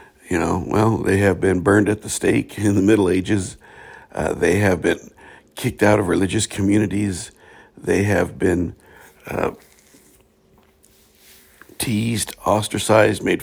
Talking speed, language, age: 135 wpm, English, 50-69